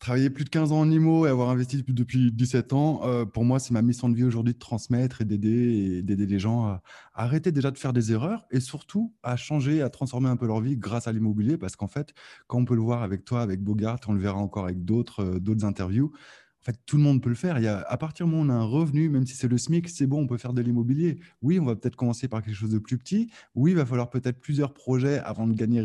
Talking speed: 280 wpm